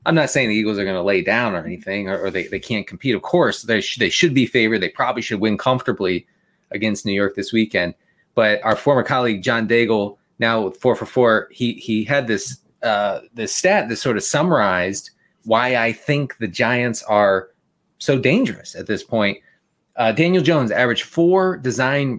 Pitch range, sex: 110-130 Hz, male